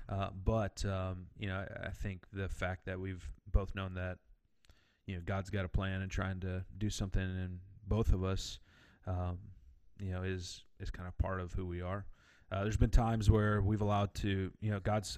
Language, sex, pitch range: English, male, 95-105 Hz